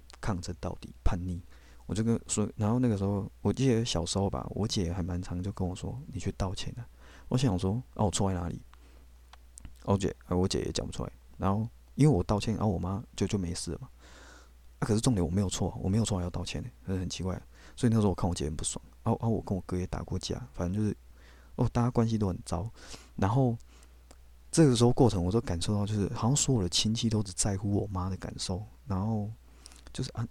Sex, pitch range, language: male, 85-110 Hz, Chinese